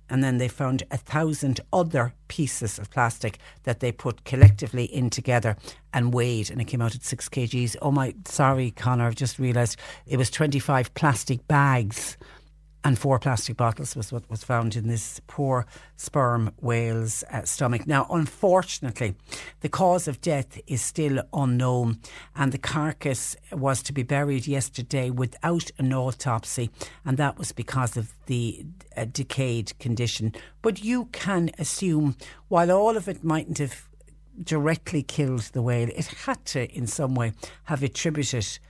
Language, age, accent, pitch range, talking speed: English, 60-79, Irish, 120-150 Hz, 160 wpm